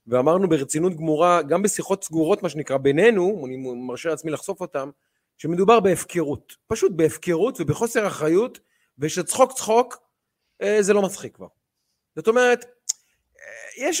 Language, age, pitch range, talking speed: Hebrew, 30-49, 150-220 Hz, 110 wpm